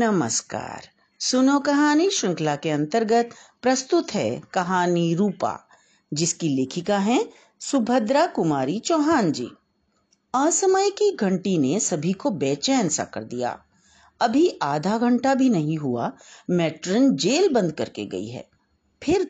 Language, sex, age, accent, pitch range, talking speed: Hindi, female, 50-69, native, 185-295 Hz, 125 wpm